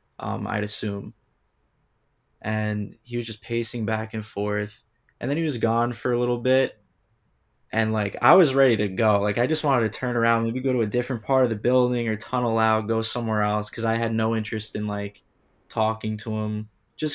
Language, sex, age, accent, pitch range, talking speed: English, male, 20-39, American, 105-130 Hz, 210 wpm